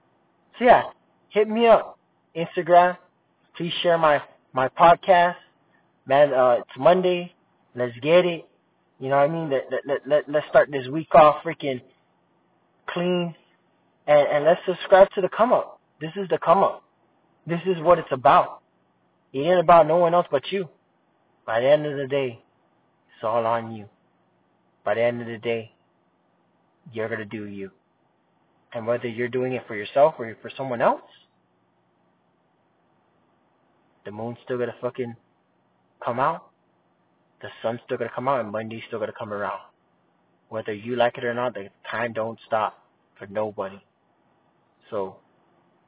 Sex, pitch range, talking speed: male, 110-165 Hz, 165 wpm